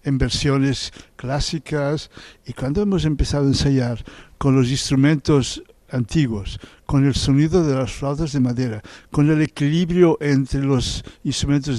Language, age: Portuguese, 60-79